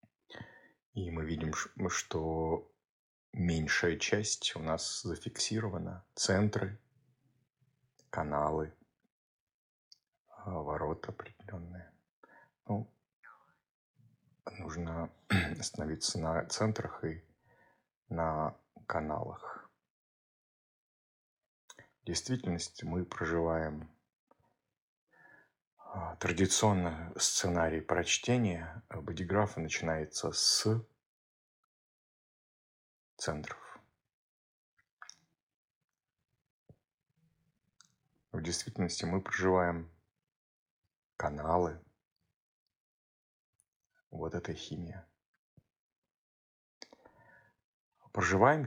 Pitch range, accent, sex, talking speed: 80-105 Hz, native, male, 50 wpm